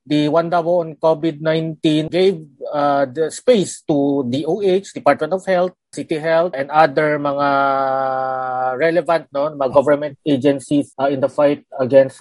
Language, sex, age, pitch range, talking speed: Filipino, male, 30-49, 140-165 Hz, 145 wpm